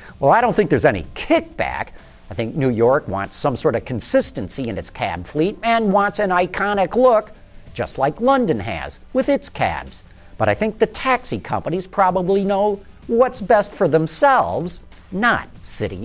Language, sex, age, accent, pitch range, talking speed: English, male, 50-69, American, 140-215 Hz, 170 wpm